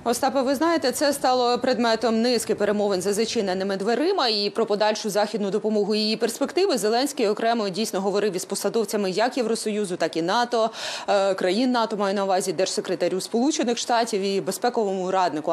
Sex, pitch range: female, 195-250 Hz